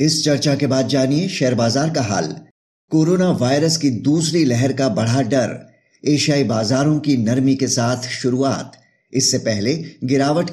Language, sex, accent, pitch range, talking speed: Hindi, male, native, 125-145 Hz, 155 wpm